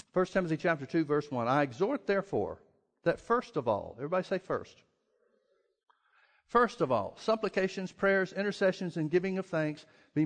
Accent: American